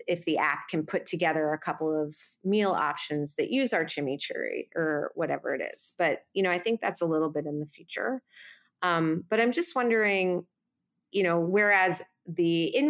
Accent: American